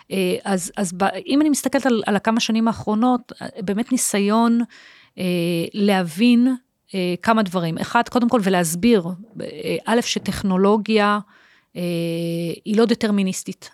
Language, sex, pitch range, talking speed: Hebrew, female, 175-225 Hz, 120 wpm